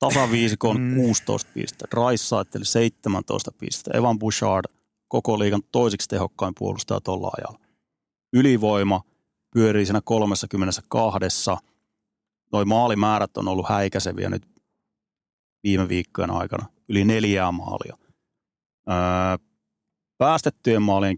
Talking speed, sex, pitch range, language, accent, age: 95 wpm, male, 95-115 Hz, Finnish, native, 30-49